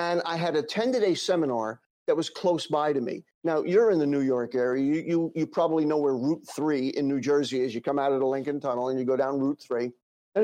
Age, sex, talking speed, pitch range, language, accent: 50-69, male, 255 wpm, 145-185 Hz, English, American